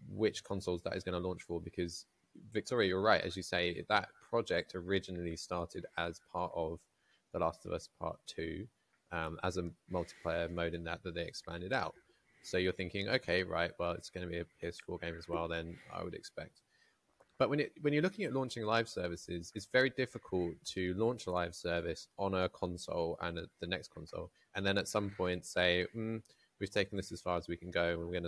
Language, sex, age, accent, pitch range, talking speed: English, male, 20-39, British, 85-105 Hz, 220 wpm